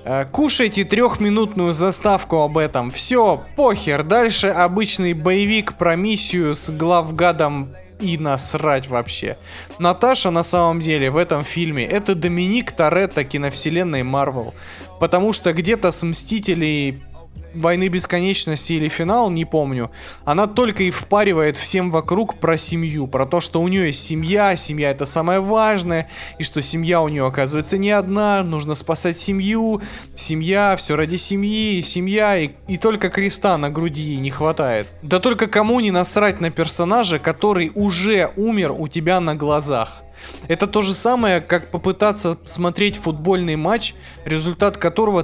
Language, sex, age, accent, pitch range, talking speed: Russian, male, 20-39, native, 155-195 Hz, 145 wpm